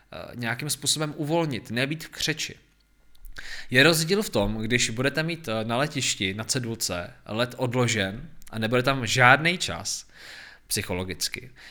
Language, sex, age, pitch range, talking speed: Czech, male, 20-39, 105-135 Hz, 130 wpm